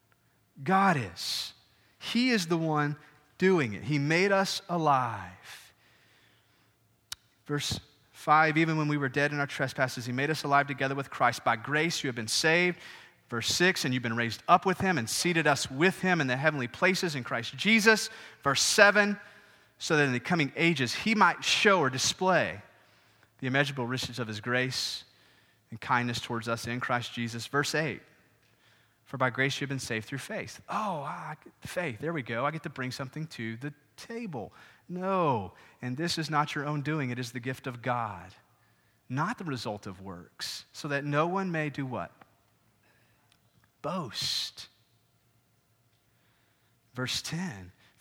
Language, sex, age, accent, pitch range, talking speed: English, male, 30-49, American, 120-175 Hz, 170 wpm